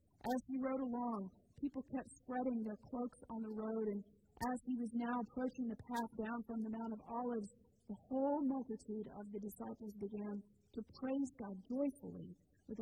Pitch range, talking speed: 205-240 Hz, 180 wpm